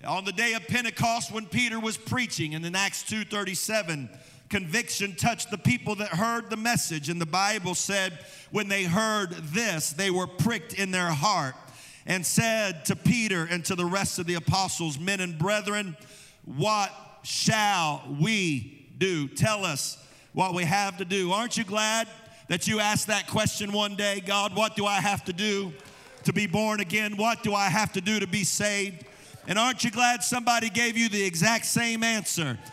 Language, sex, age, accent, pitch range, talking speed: English, male, 50-69, American, 180-230 Hz, 185 wpm